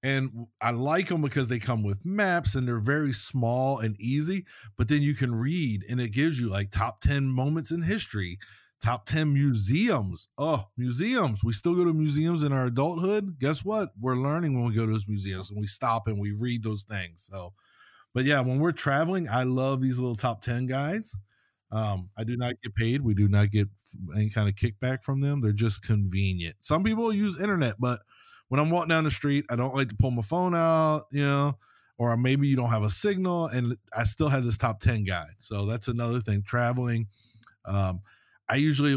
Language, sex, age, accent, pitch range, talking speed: English, male, 20-39, American, 105-140 Hz, 210 wpm